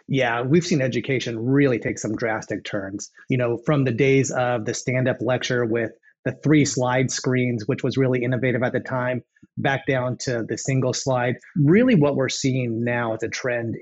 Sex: male